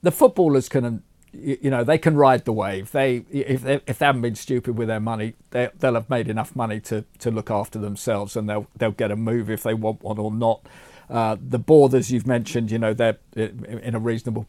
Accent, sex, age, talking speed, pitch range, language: British, male, 40-59, 230 wpm, 115-160 Hz, English